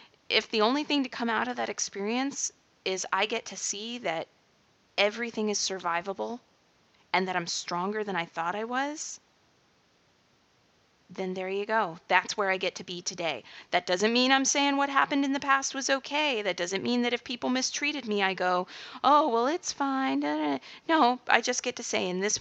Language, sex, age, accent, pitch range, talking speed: English, female, 30-49, American, 175-230 Hz, 195 wpm